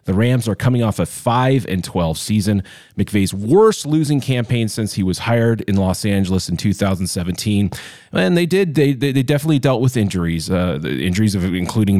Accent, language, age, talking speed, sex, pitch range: American, English, 30-49, 190 wpm, male, 95-125 Hz